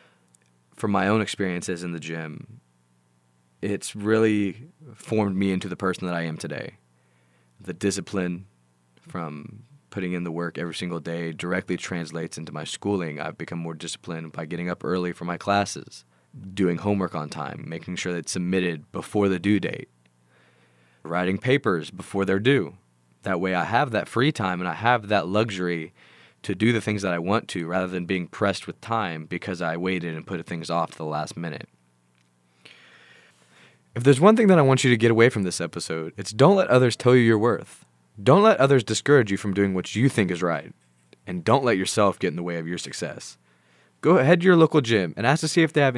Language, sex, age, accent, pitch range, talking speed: English, male, 20-39, American, 80-110 Hz, 205 wpm